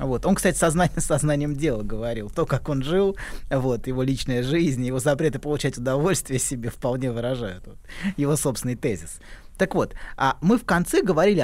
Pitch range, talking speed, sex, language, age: 130-185 Hz, 170 wpm, male, Russian, 20-39